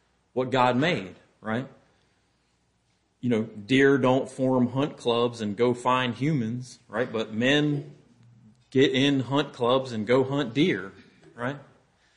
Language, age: English, 30-49